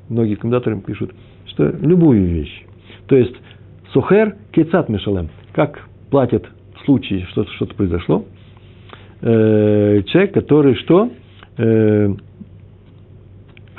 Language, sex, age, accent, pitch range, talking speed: Russian, male, 60-79, native, 100-135 Hz, 120 wpm